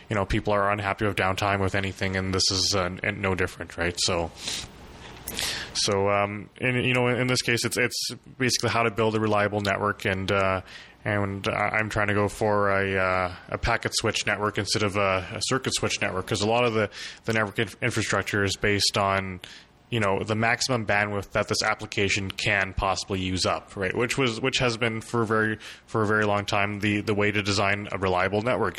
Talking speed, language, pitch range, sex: 215 wpm, English, 95-110 Hz, male